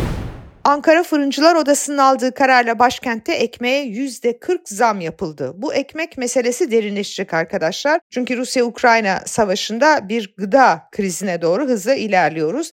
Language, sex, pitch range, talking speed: Turkish, female, 220-275 Hz, 115 wpm